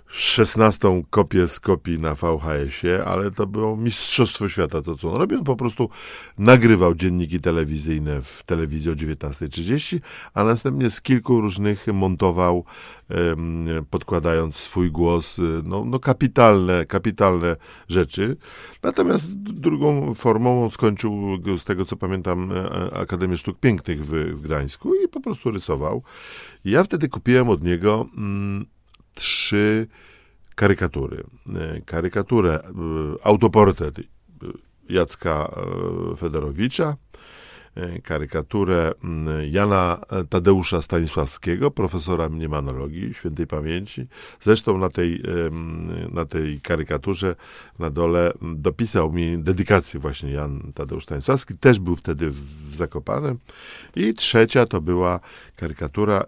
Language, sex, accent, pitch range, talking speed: Polish, male, native, 80-105 Hz, 110 wpm